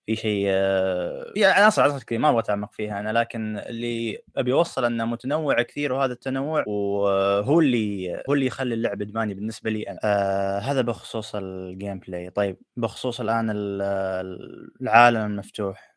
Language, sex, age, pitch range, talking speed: Arabic, male, 20-39, 105-125 Hz, 145 wpm